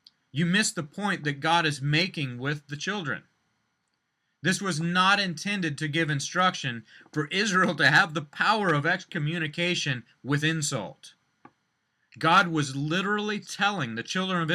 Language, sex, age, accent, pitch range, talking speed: English, male, 30-49, American, 145-180 Hz, 145 wpm